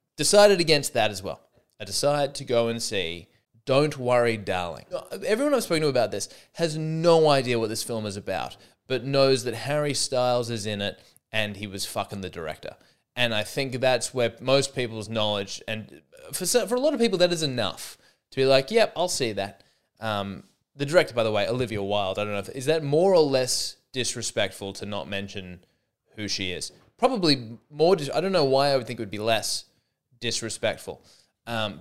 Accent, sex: Australian, male